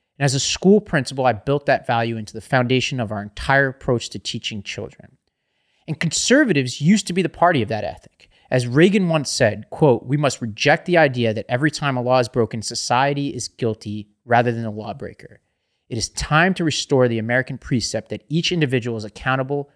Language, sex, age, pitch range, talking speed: English, male, 30-49, 115-155 Hz, 200 wpm